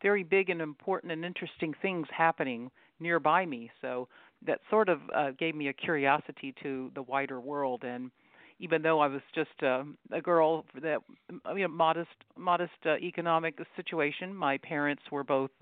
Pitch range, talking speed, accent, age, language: 135-165 Hz, 175 wpm, American, 50-69, English